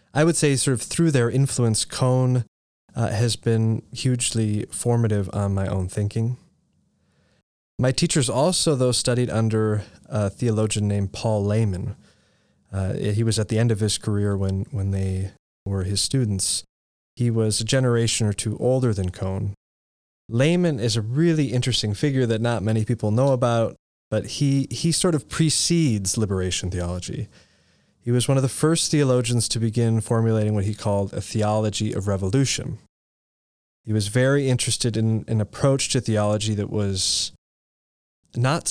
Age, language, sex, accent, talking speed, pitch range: 20-39, English, male, American, 160 wpm, 100-125 Hz